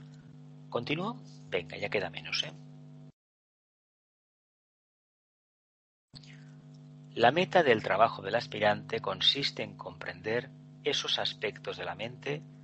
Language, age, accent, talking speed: Spanish, 40-59, Spanish, 90 wpm